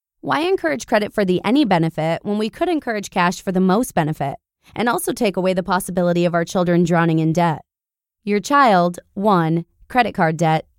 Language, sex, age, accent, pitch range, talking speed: English, female, 20-39, American, 180-260 Hz, 190 wpm